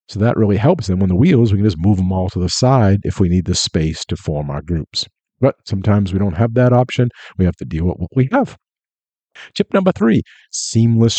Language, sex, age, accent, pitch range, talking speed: English, male, 50-69, American, 95-125 Hz, 240 wpm